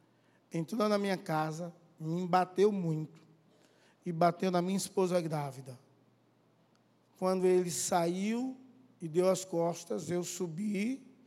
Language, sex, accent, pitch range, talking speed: Portuguese, male, Brazilian, 150-190 Hz, 115 wpm